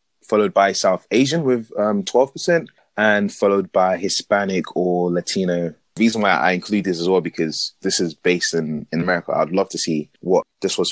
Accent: British